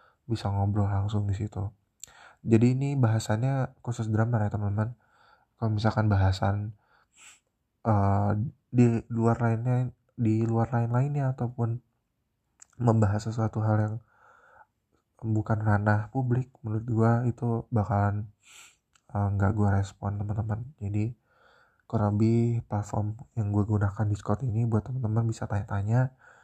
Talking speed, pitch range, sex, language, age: 120 wpm, 105-120 Hz, male, Indonesian, 20-39